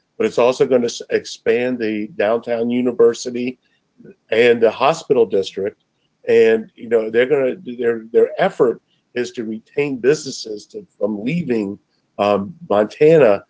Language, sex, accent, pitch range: English, male, American, 110-150 Hz